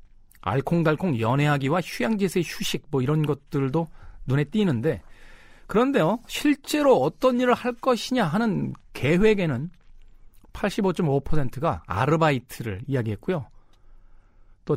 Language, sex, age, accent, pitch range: Korean, male, 40-59, native, 105-170 Hz